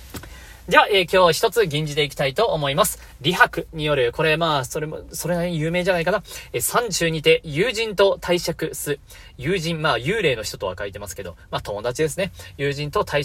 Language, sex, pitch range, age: Japanese, male, 140-195 Hz, 40-59